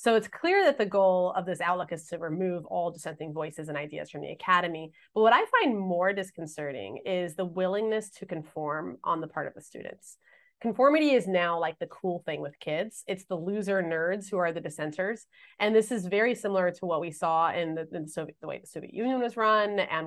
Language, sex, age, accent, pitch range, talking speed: English, female, 20-39, American, 165-215 Hz, 220 wpm